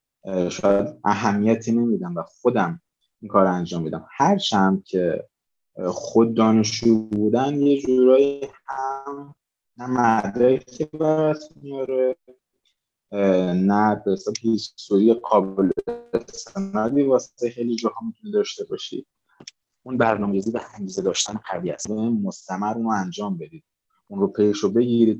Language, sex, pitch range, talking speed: Persian, male, 100-130 Hz, 125 wpm